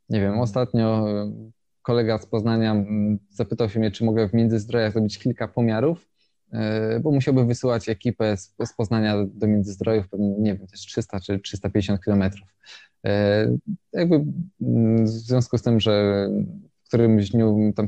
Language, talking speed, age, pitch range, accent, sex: Polish, 130 wpm, 20-39, 105-120 Hz, native, male